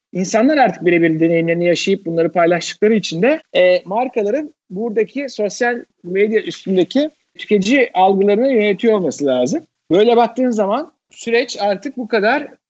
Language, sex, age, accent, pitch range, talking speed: Turkish, male, 50-69, native, 180-225 Hz, 130 wpm